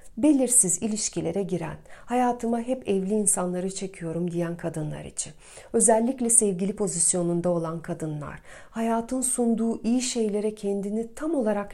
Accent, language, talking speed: native, Turkish, 120 wpm